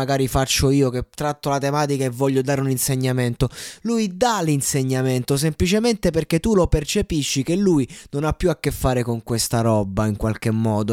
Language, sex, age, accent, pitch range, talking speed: Italian, male, 20-39, native, 125-150 Hz, 185 wpm